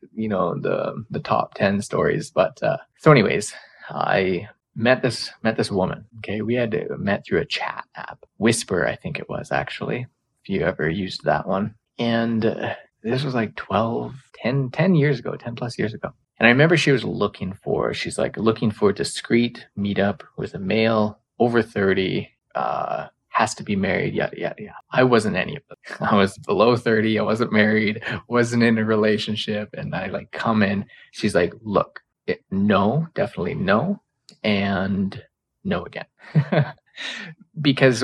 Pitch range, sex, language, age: 105-135 Hz, male, English, 20-39